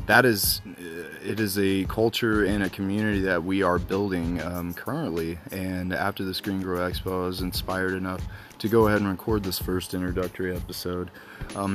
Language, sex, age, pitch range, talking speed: English, male, 20-39, 90-95 Hz, 180 wpm